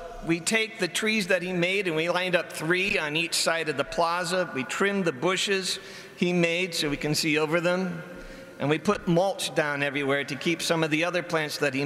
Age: 50-69